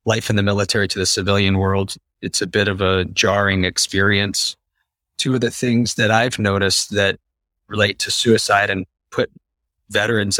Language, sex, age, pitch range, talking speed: English, male, 30-49, 95-125 Hz, 165 wpm